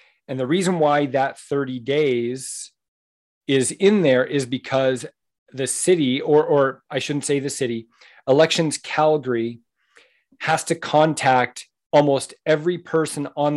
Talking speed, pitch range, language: 135 wpm, 135-165 Hz, English